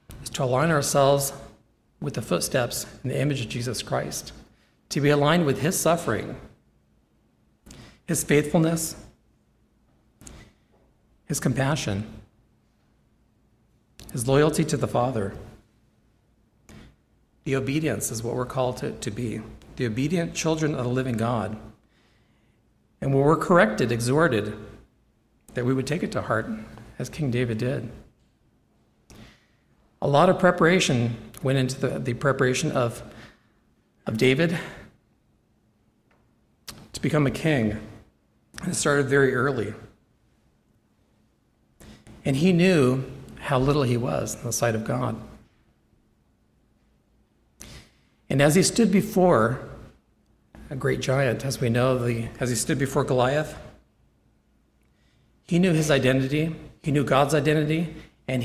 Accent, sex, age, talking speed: American, male, 40-59, 120 wpm